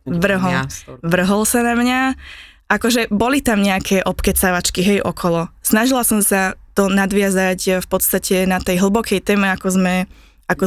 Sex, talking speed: female, 145 wpm